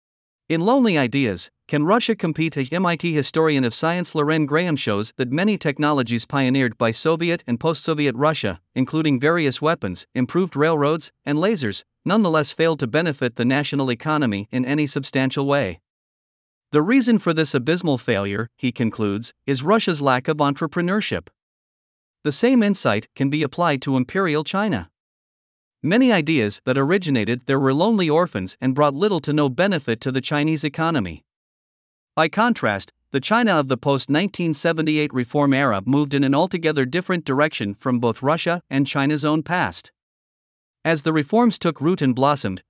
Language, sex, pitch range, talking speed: Vietnamese, male, 130-165 Hz, 155 wpm